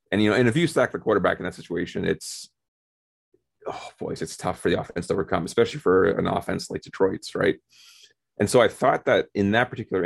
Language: English